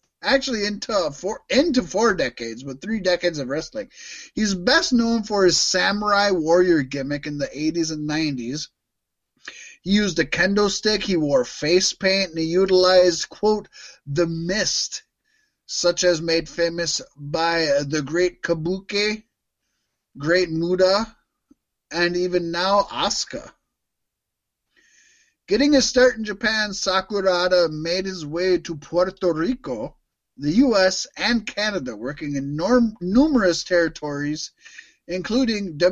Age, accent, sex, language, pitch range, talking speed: 30-49, American, male, English, 165-215 Hz, 120 wpm